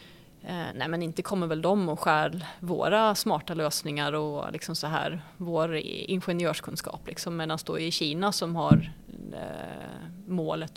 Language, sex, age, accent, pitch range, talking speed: Swedish, female, 30-49, native, 160-185 Hz, 140 wpm